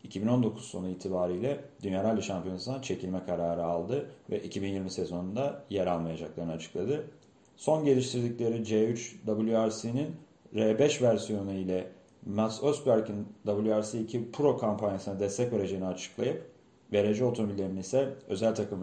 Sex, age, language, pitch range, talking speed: male, 40-59, Turkish, 95-125 Hz, 115 wpm